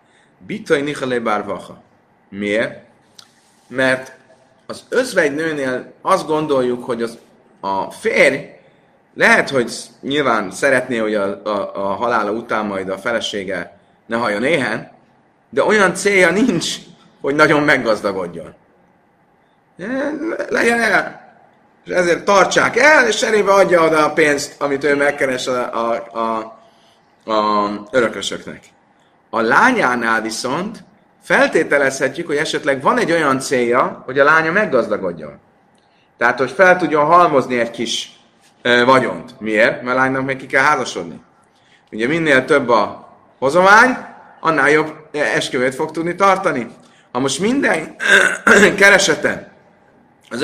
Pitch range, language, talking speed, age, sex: 125-185 Hz, Hungarian, 120 wpm, 30-49, male